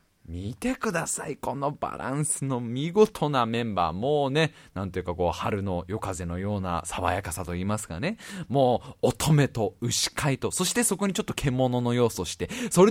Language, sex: Japanese, male